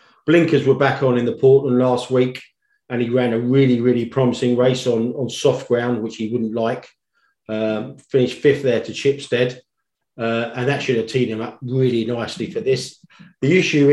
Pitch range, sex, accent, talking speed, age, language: 115-135 Hz, male, British, 195 wpm, 40-59, English